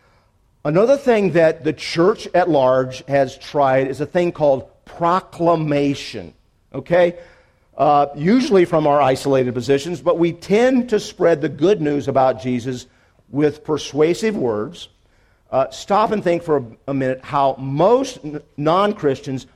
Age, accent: 50-69, American